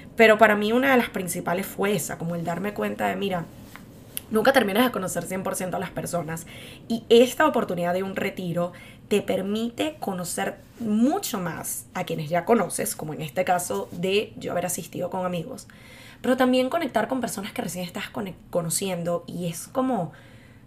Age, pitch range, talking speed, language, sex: 10-29, 175-225 Hz, 175 wpm, Spanish, female